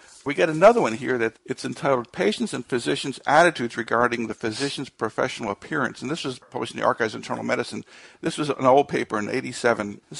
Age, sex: 50-69, male